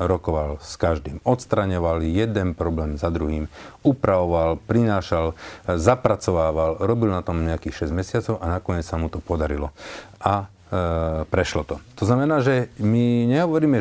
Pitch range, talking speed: 90-115 Hz, 140 wpm